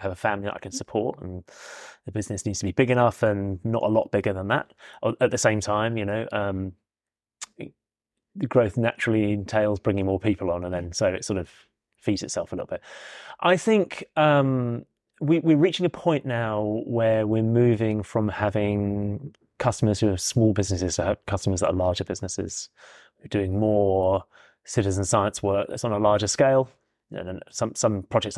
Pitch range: 95-115 Hz